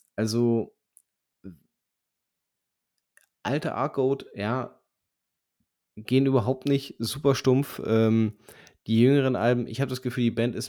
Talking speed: 110 wpm